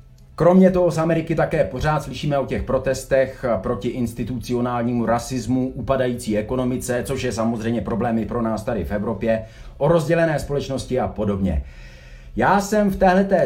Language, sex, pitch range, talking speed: Czech, male, 125-185 Hz, 145 wpm